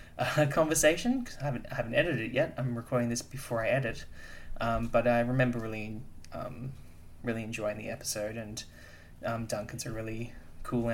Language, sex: English, male